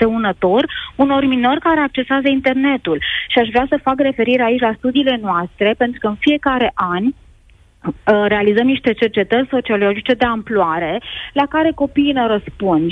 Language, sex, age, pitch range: Romanian, female, 20-39, 220-290 Hz